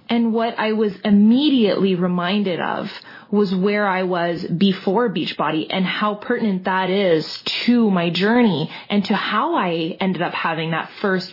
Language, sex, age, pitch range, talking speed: English, female, 20-39, 180-215 Hz, 160 wpm